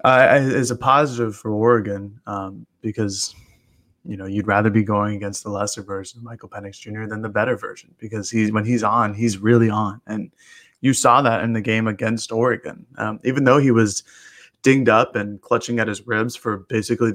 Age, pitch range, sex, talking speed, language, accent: 20-39, 105-120 Hz, male, 200 wpm, English, American